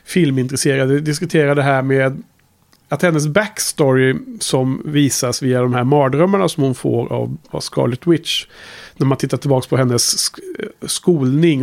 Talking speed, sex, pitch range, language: 140 wpm, male, 130-160 Hz, Swedish